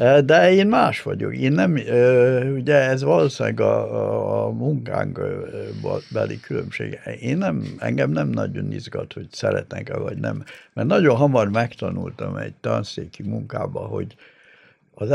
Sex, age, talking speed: male, 70-89, 130 wpm